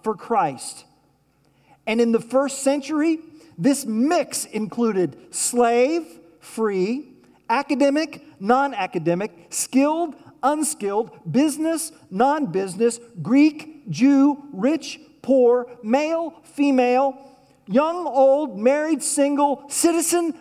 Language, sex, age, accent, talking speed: English, male, 40-59, American, 85 wpm